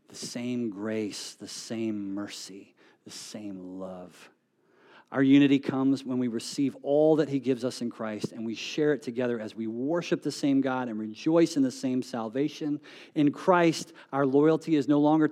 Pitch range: 115-160 Hz